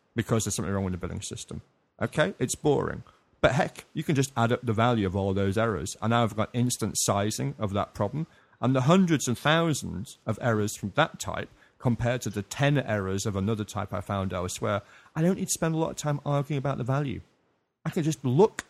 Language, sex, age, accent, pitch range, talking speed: English, male, 30-49, British, 100-140 Hz, 230 wpm